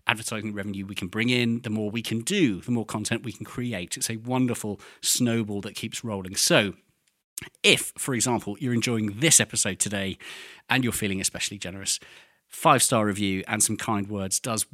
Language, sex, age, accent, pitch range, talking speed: English, male, 40-59, British, 100-125 Hz, 185 wpm